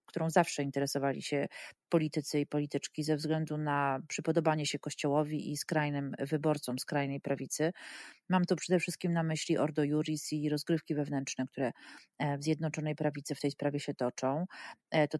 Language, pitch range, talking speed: Polish, 145-165 Hz, 155 wpm